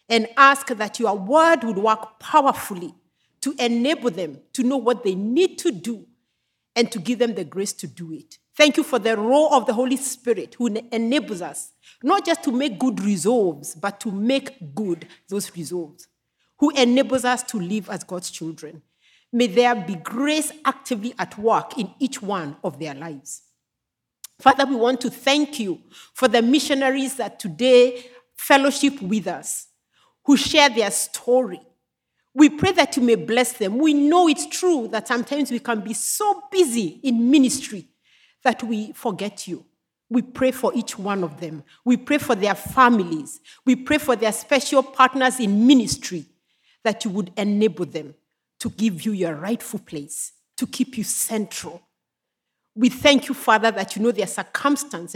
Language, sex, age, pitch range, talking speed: English, female, 40-59, 200-265 Hz, 170 wpm